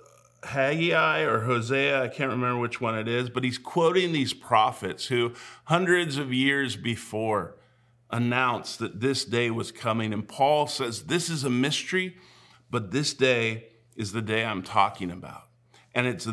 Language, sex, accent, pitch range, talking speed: English, male, American, 110-130 Hz, 160 wpm